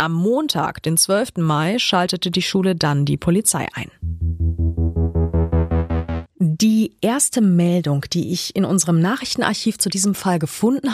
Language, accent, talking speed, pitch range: German, German, 130 wpm, 165-220 Hz